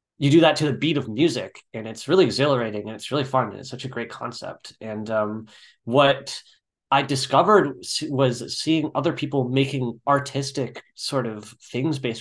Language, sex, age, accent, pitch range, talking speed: English, male, 20-39, American, 115-140 Hz, 180 wpm